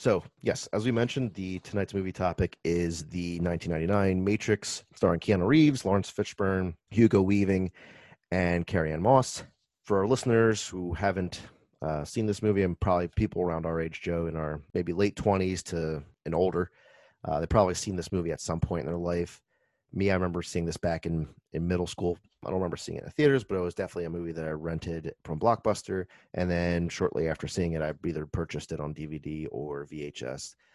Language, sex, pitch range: English, male, 85-100 Hz